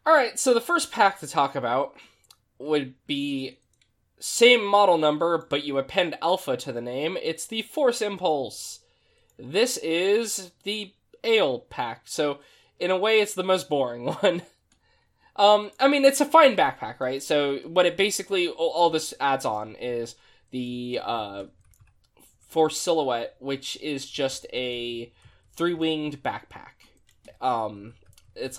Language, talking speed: English, 140 wpm